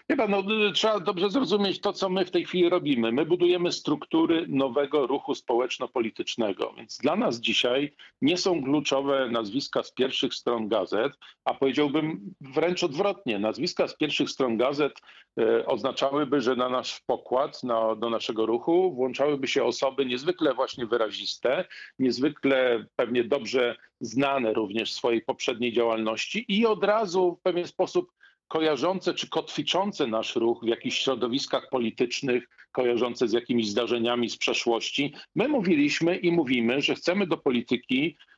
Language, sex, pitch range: Polish, male, 125-190 Hz